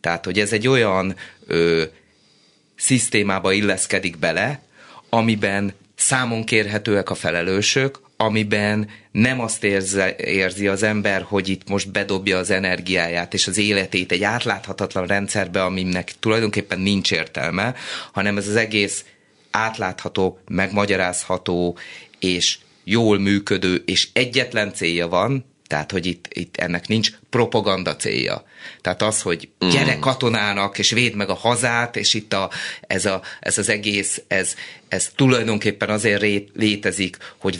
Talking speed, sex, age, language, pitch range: 130 wpm, male, 30-49, Hungarian, 95-110 Hz